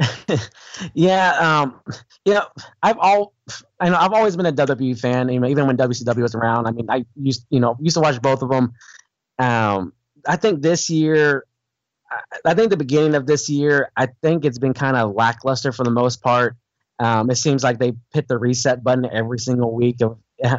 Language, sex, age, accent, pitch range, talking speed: English, male, 20-39, American, 120-140 Hz, 200 wpm